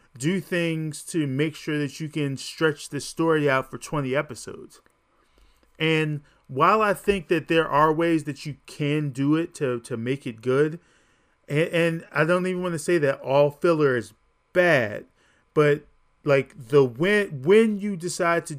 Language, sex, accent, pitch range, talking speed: English, male, American, 135-170 Hz, 175 wpm